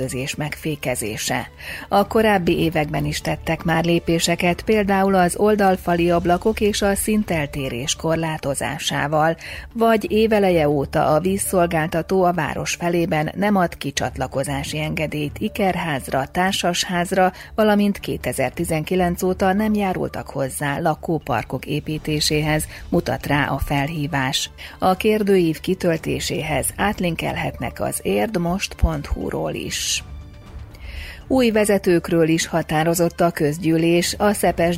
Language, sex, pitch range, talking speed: Hungarian, female, 150-185 Hz, 100 wpm